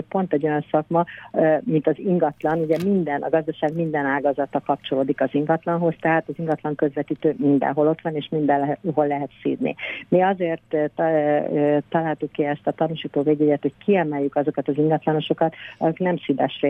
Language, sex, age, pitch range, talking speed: Hungarian, female, 50-69, 140-155 Hz, 155 wpm